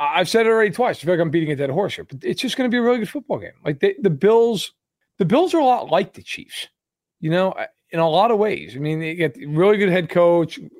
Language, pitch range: English, 165-225 Hz